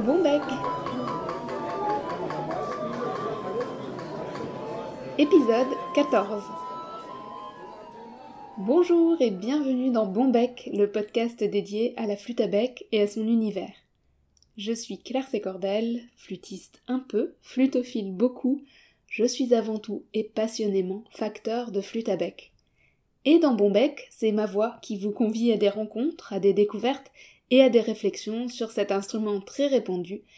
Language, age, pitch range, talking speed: French, 20-39, 200-255 Hz, 125 wpm